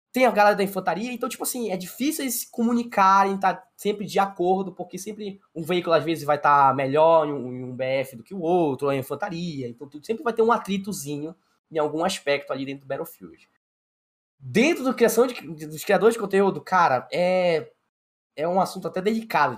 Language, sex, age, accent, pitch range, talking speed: Portuguese, male, 10-29, Brazilian, 150-195 Hz, 200 wpm